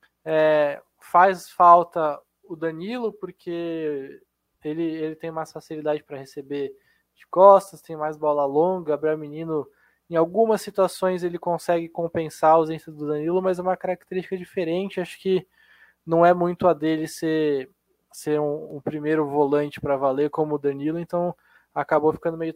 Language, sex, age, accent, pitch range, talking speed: Portuguese, male, 20-39, Brazilian, 155-185 Hz, 150 wpm